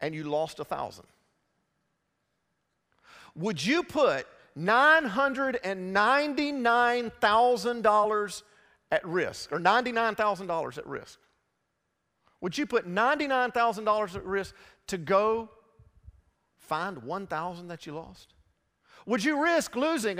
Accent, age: American, 50-69